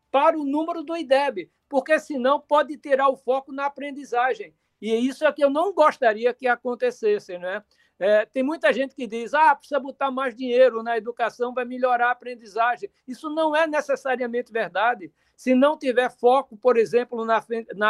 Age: 60-79